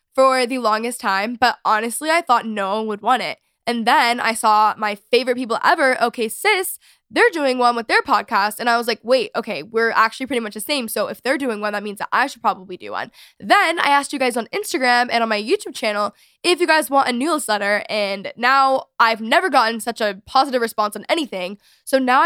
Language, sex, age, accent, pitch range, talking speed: English, female, 10-29, American, 215-260 Hz, 230 wpm